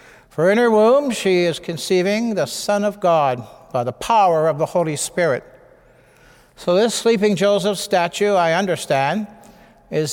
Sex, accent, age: male, American, 60-79